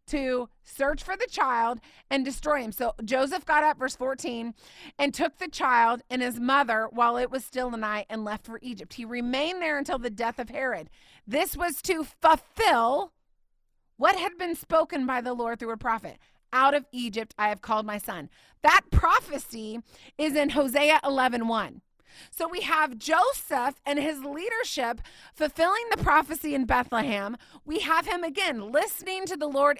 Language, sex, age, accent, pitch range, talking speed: English, female, 30-49, American, 250-325 Hz, 175 wpm